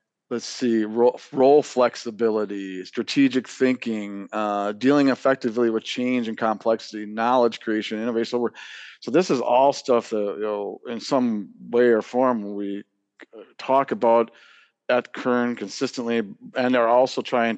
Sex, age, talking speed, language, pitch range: male, 50-69, 145 wpm, English, 110-135 Hz